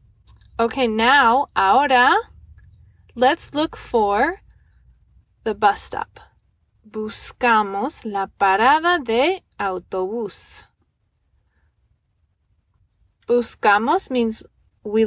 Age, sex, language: 20-39, female, English